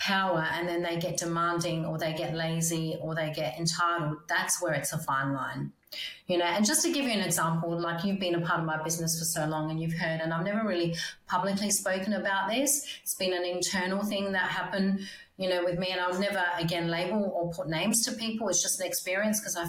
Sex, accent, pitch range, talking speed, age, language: female, Australian, 165-190 Hz, 240 wpm, 30-49, English